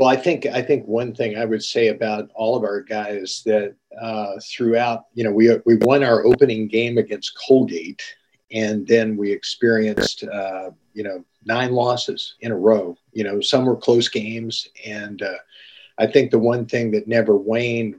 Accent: American